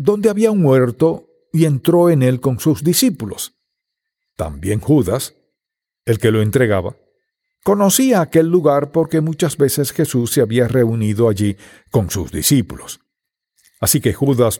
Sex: male